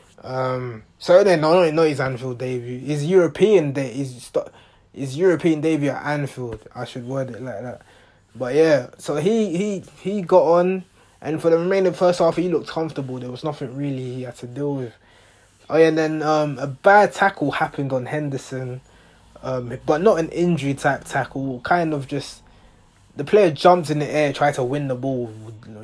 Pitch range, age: 125-160 Hz, 20-39